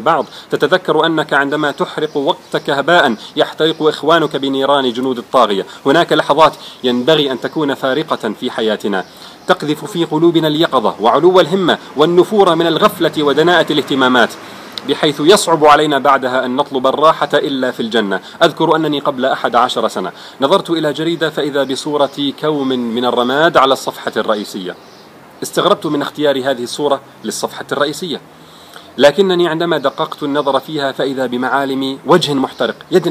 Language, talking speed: Arabic, 135 wpm